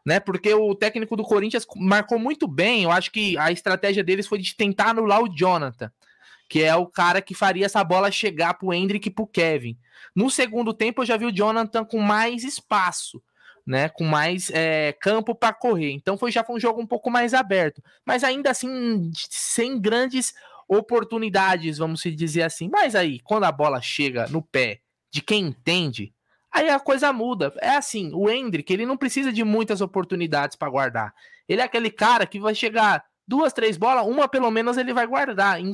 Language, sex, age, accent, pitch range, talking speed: Portuguese, male, 20-39, Brazilian, 175-235 Hz, 195 wpm